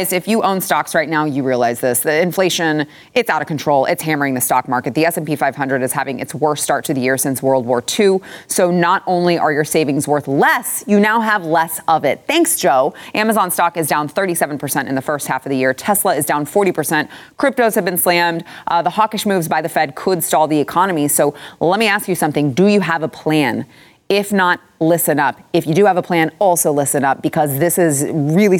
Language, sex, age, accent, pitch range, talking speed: English, female, 30-49, American, 145-185 Hz, 230 wpm